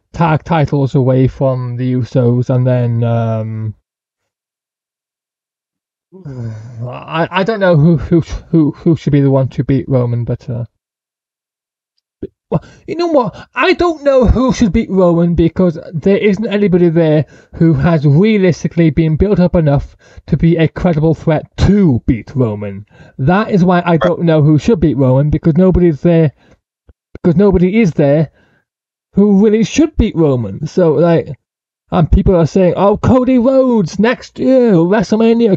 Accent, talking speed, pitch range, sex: British, 155 wpm, 155-215 Hz, male